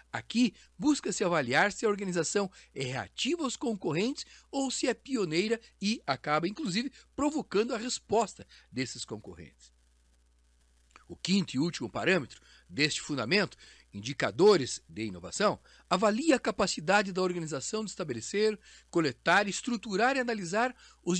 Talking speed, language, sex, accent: 125 wpm, Portuguese, male, Brazilian